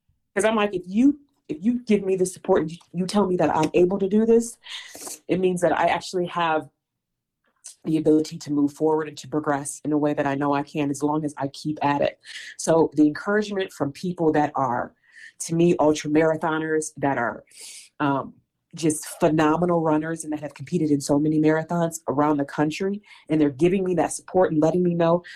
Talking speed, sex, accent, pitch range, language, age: 210 wpm, female, American, 150-190 Hz, English, 30-49